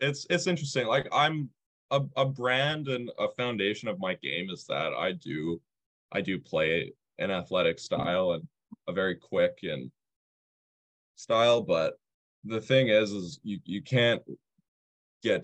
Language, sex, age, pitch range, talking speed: English, male, 20-39, 85-120 Hz, 150 wpm